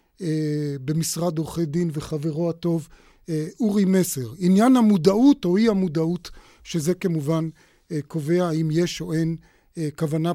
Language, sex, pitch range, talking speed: Hebrew, male, 165-205 Hz, 115 wpm